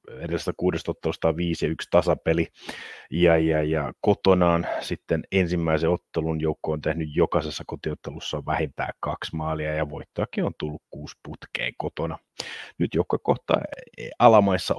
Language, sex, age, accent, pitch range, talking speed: Finnish, male, 30-49, native, 80-110 Hz, 115 wpm